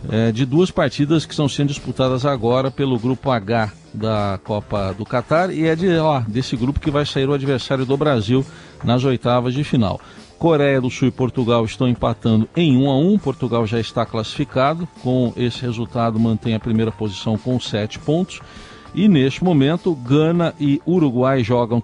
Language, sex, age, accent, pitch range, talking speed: Portuguese, male, 50-69, Brazilian, 115-145 Hz, 175 wpm